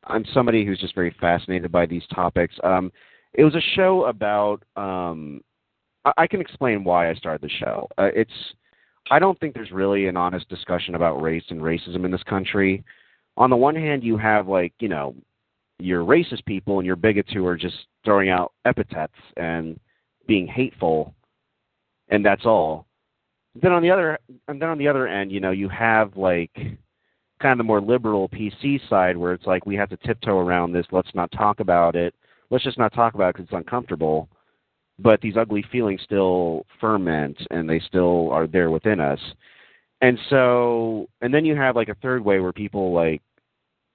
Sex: male